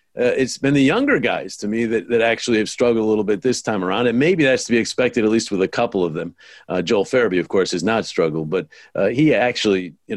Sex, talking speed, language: male, 265 wpm, English